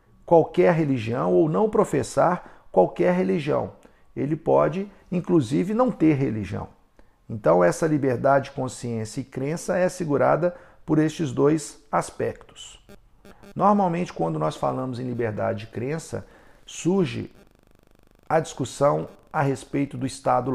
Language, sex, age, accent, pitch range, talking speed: Portuguese, male, 50-69, Brazilian, 125-170 Hz, 115 wpm